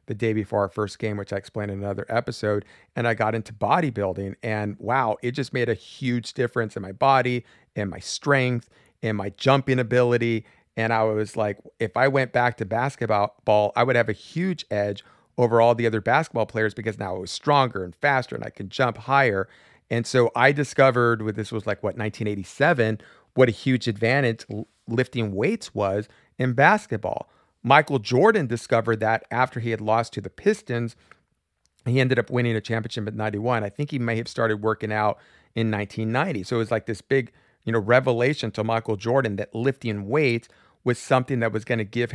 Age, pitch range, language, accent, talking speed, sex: 40-59, 105-125 Hz, English, American, 200 wpm, male